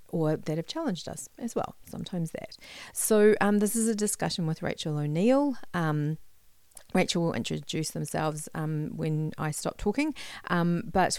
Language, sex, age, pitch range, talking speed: English, female, 40-59, 155-190 Hz, 155 wpm